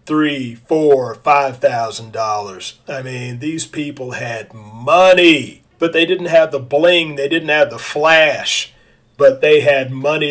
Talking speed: 150 wpm